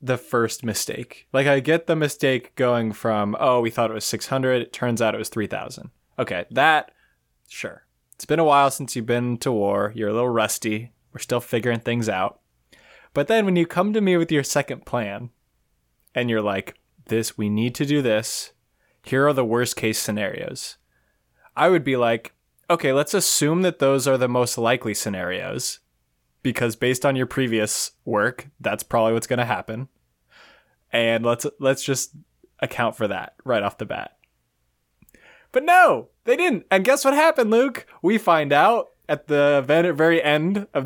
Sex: male